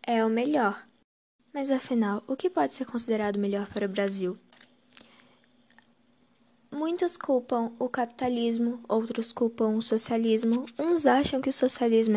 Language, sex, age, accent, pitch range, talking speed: Portuguese, female, 10-29, Brazilian, 225-265 Hz, 135 wpm